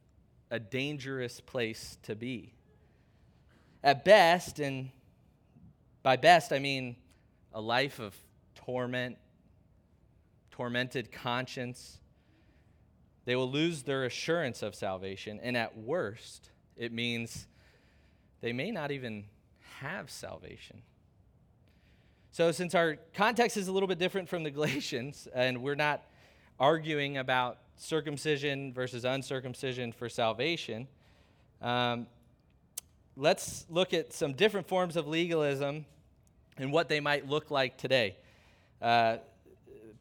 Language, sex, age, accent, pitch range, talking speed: English, male, 20-39, American, 120-150 Hz, 110 wpm